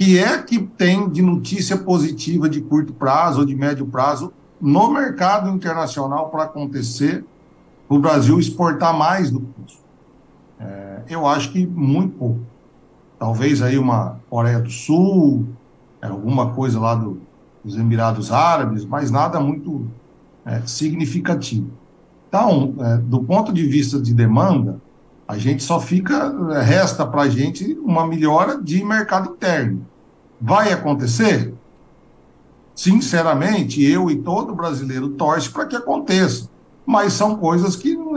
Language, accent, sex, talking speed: Portuguese, Brazilian, male, 135 wpm